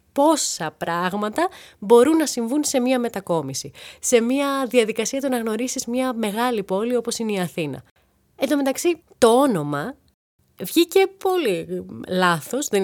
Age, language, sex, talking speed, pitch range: 20-39, Greek, female, 140 wpm, 170-270 Hz